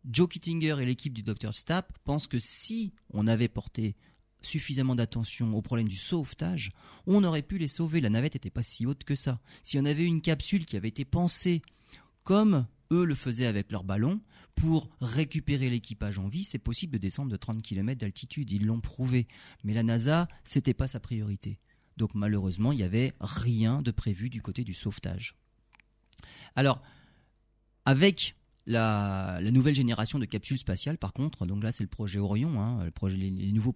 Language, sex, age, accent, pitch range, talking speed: French, male, 30-49, French, 105-140 Hz, 185 wpm